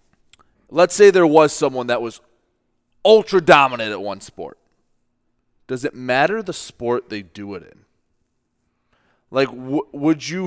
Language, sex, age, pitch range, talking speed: English, male, 30-49, 120-155 Hz, 145 wpm